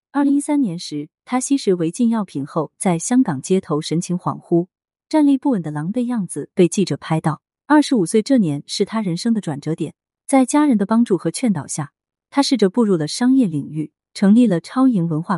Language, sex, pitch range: Chinese, female, 160-250 Hz